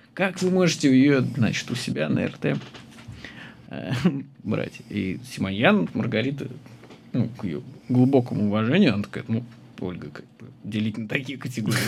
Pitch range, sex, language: 120-160 Hz, male, Russian